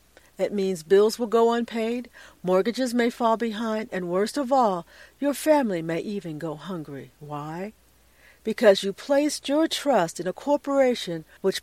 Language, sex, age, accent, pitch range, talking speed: English, female, 60-79, American, 175-245 Hz, 155 wpm